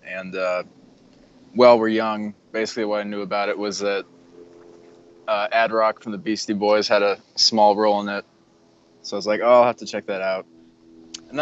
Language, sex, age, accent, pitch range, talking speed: English, male, 20-39, American, 95-105 Hz, 195 wpm